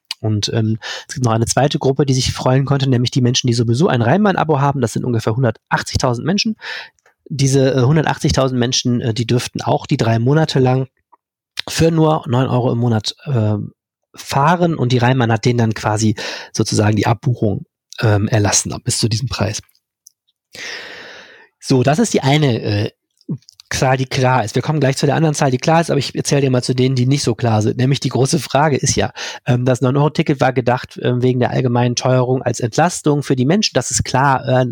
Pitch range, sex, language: 120-145 Hz, male, German